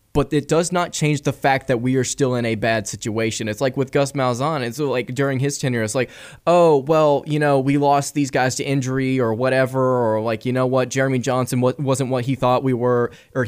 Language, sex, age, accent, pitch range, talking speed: English, male, 20-39, American, 125-150 Hz, 235 wpm